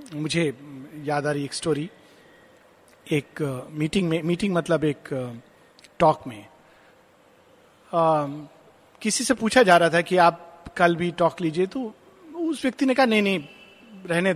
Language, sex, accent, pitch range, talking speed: Hindi, male, native, 170-255 Hz, 155 wpm